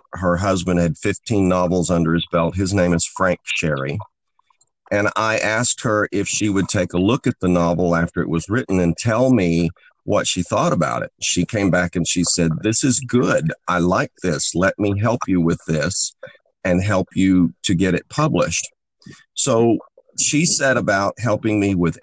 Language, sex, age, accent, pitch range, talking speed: English, male, 50-69, American, 85-105 Hz, 190 wpm